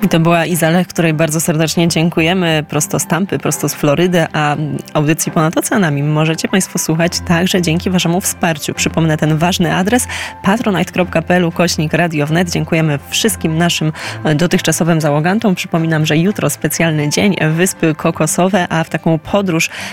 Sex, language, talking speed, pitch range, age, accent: female, Polish, 145 wpm, 160-180 Hz, 20-39, native